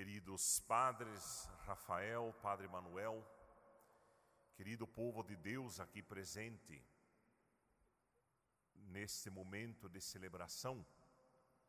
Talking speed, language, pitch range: 75 wpm, Portuguese, 100-130 Hz